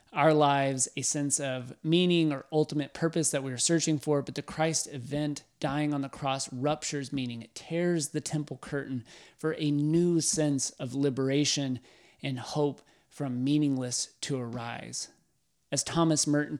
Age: 30-49